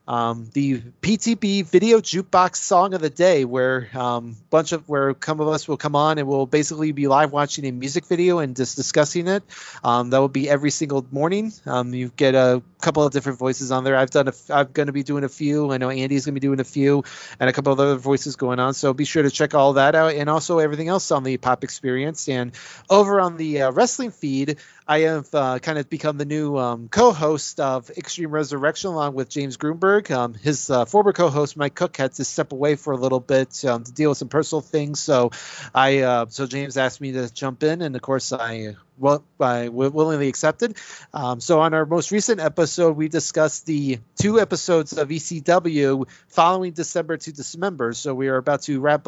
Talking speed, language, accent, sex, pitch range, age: 225 wpm, English, American, male, 135-160 Hz, 30-49